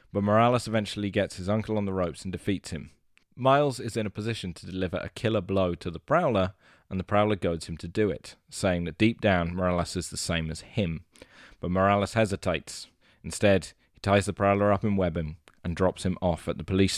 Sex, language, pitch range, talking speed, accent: male, English, 85-105 Hz, 220 wpm, British